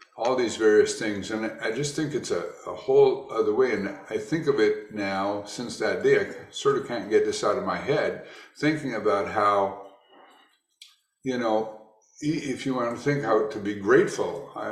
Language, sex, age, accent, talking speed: English, male, 50-69, American, 195 wpm